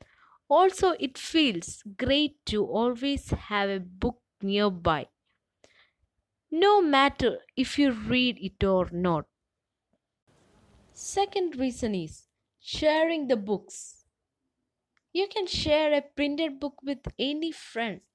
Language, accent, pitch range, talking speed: English, Indian, 205-295 Hz, 110 wpm